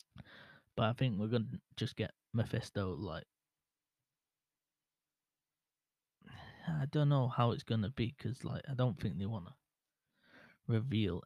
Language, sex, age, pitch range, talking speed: English, male, 20-39, 110-125 Hz, 145 wpm